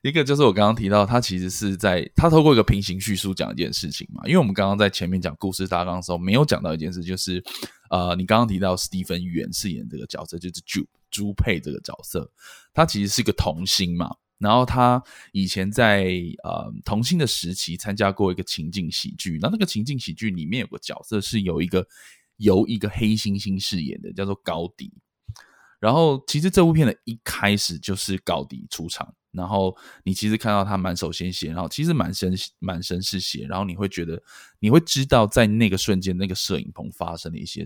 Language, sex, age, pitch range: Chinese, male, 20-39, 90-105 Hz